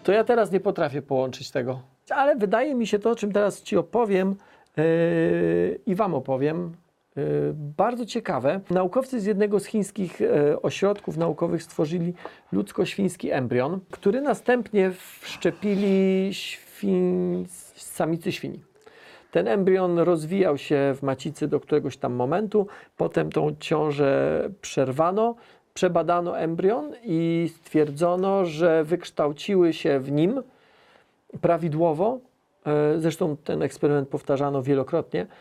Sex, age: male, 40-59